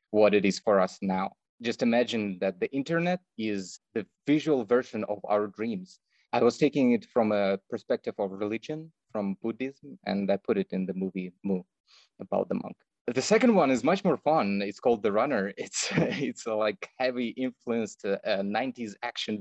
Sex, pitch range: male, 100-125 Hz